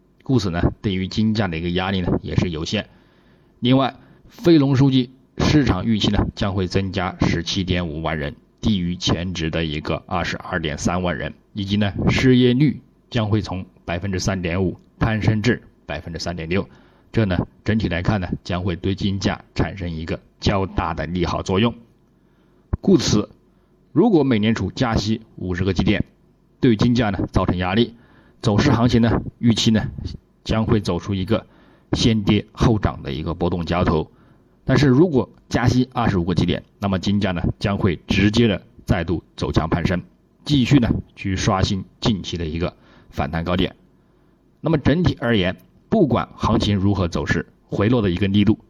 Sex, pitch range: male, 90-115 Hz